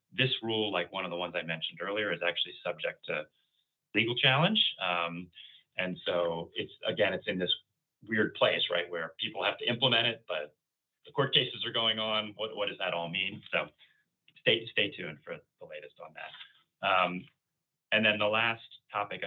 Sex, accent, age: male, American, 30-49